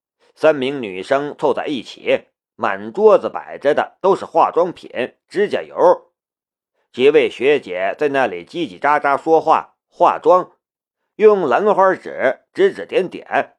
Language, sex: Chinese, male